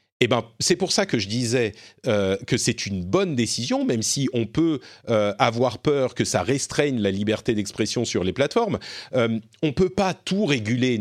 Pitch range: 110-150 Hz